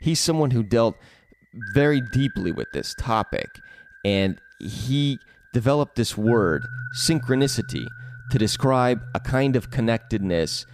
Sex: male